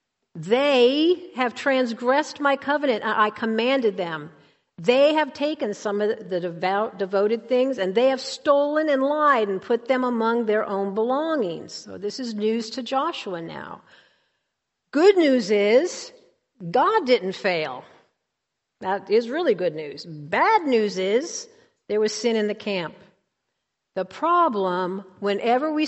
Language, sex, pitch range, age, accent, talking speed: English, female, 190-270 Hz, 50-69, American, 140 wpm